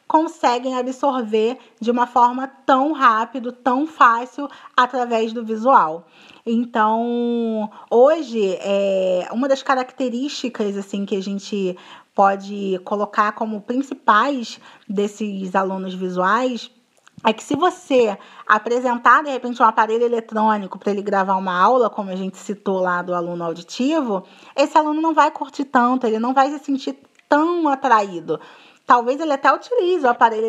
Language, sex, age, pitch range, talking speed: Portuguese, female, 20-39, 210-265 Hz, 135 wpm